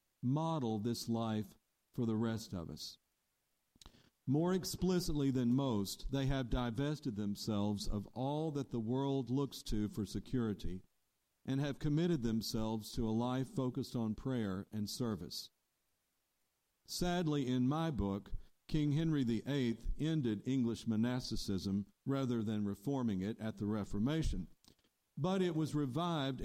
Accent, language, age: American, English, 50-69